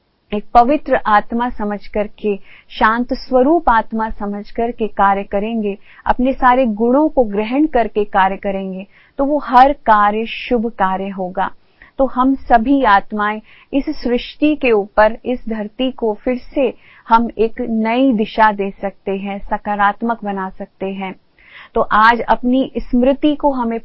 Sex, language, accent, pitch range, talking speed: female, Hindi, native, 205-245 Hz, 145 wpm